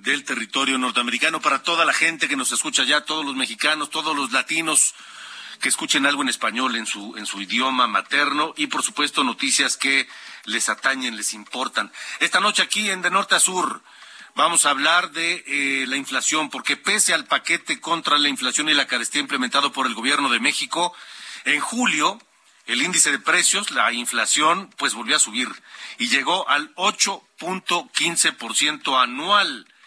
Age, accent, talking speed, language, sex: 40-59, Mexican, 170 wpm, Spanish, male